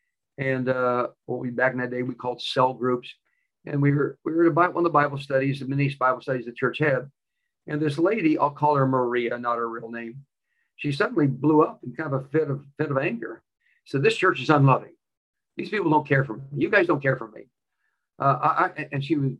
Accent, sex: American, male